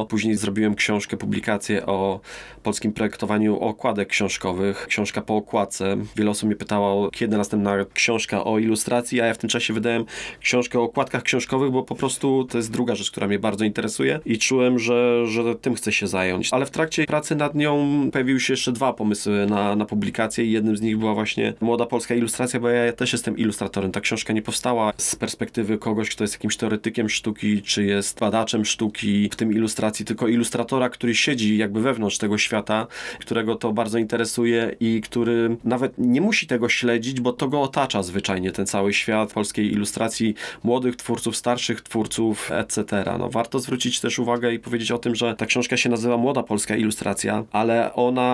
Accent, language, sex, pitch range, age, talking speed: native, Polish, male, 105-120 Hz, 20-39, 185 wpm